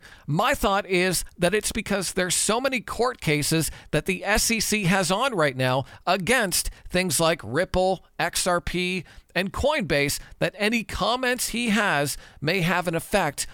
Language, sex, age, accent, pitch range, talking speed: English, male, 50-69, American, 150-215 Hz, 150 wpm